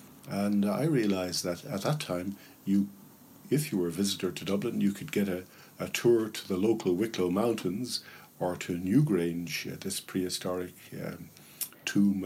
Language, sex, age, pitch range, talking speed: English, male, 50-69, 90-110 Hz, 165 wpm